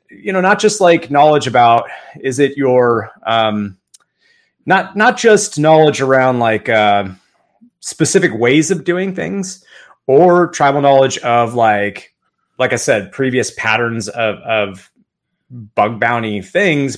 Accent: American